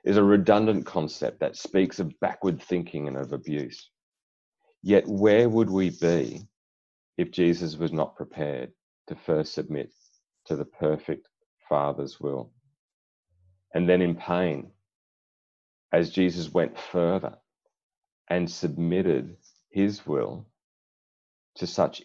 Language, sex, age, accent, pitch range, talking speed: English, male, 40-59, Australian, 80-95 Hz, 120 wpm